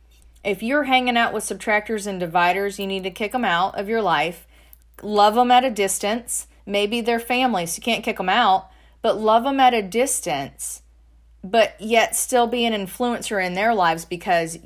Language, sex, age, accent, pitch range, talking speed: English, female, 30-49, American, 190-245 Hz, 190 wpm